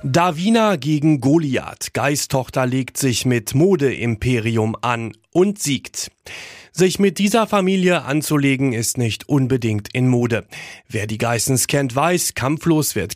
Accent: German